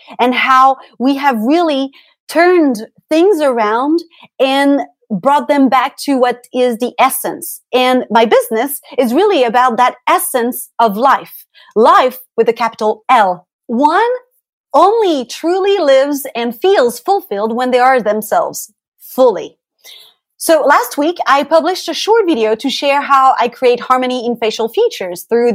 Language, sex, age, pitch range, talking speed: English, female, 30-49, 245-340 Hz, 145 wpm